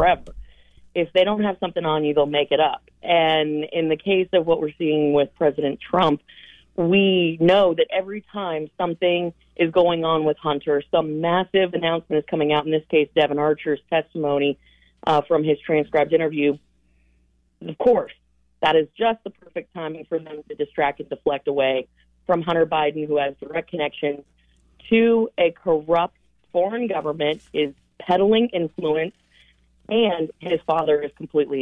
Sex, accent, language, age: female, American, English, 30-49